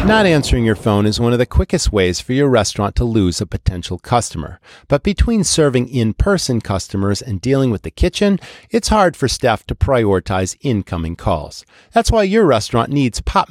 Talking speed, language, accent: 185 wpm, English, American